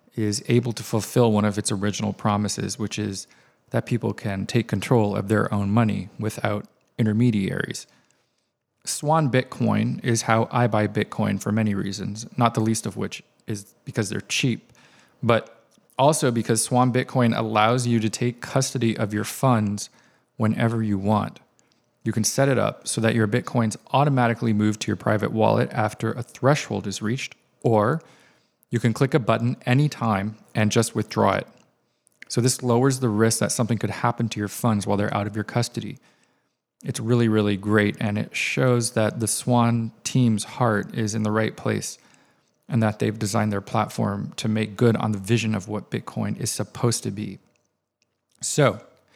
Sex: male